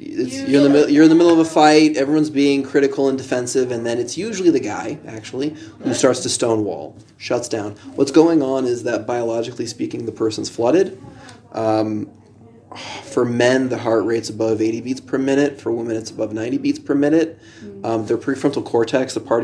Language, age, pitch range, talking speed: English, 20-39, 115-145 Hz, 200 wpm